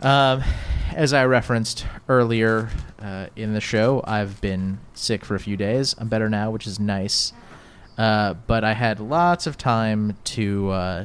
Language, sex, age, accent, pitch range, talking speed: English, male, 30-49, American, 100-130 Hz, 165 wpm